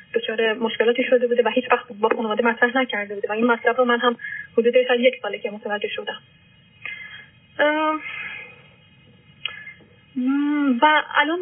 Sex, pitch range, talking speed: female, 235-285 Hz, 135 wpm